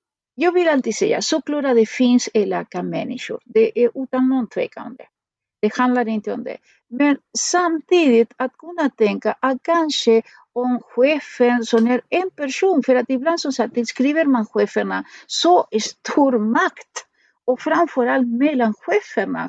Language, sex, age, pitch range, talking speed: Swedish, female, 50-69, 230-305 Hz, 140 wpm